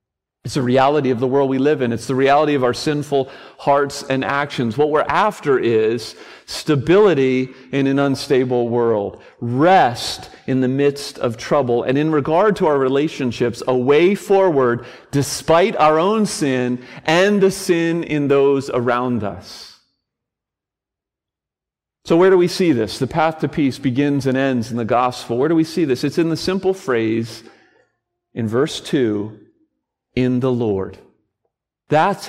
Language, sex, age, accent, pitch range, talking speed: English, male, 40-59, American, 130-180 Hz, 160 wpm